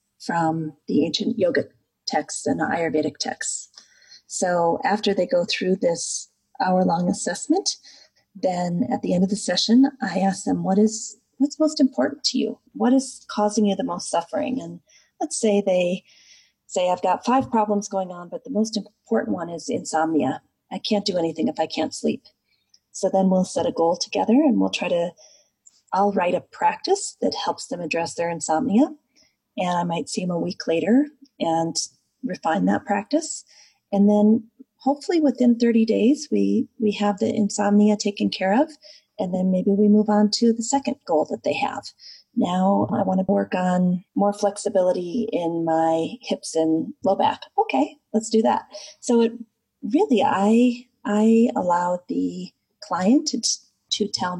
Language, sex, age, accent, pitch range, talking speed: English, female, 30-49, American, 180-255 Hz, 170 wpm